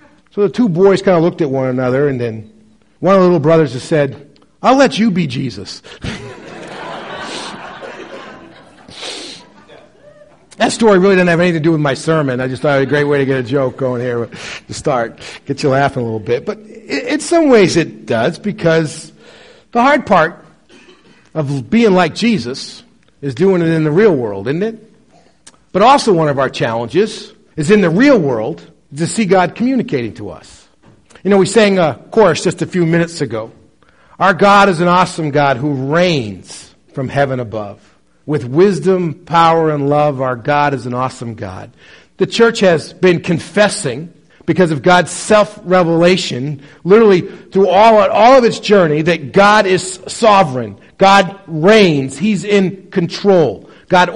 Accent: American